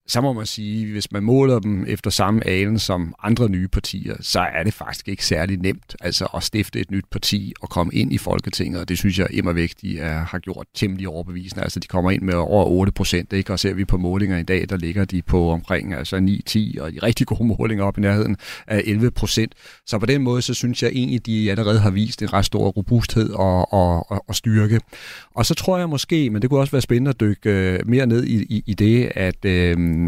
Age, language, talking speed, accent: 40-59, Danish, 235 wpm, native